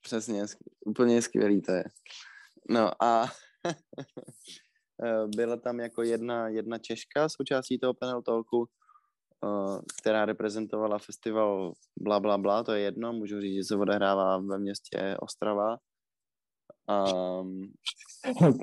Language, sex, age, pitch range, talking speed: Czech, male, 20-39, 105-130 Hz, 115 wpm